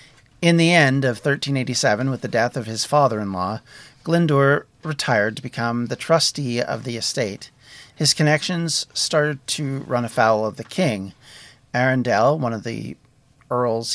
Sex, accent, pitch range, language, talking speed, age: male, American, 115-140 Hz, English, 145 wpm, 40-59